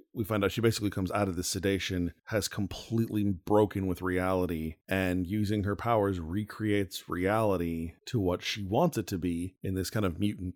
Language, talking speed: English, 190 wpm